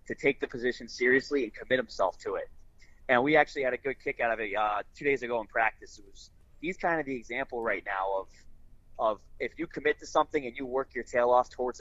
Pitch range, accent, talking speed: 120-145 Hz, American, 250 wpm